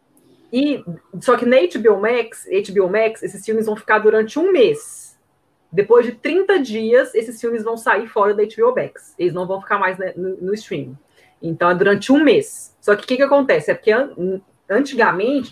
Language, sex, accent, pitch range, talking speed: Portuguese, female, Brazilian, 195-260 Hz, 195 wpm